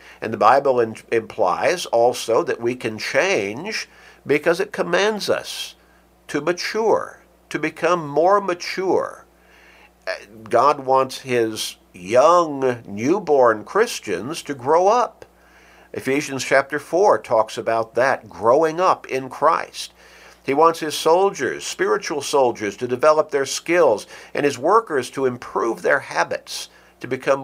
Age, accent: 50-69, American